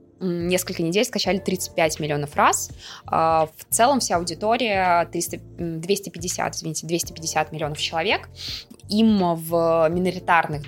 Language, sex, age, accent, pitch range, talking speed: Russian, female, 20-39, native, 155-190 Hz, 105 wpm